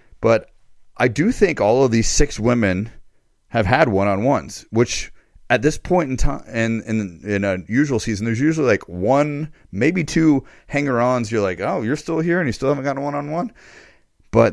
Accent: American